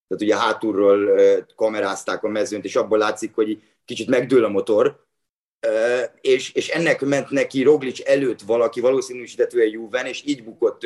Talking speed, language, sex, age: 150 wpm, Hungarian, male, 30-49